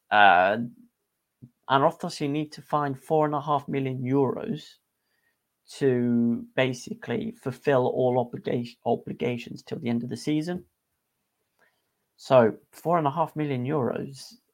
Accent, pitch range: British, 120-150 Hz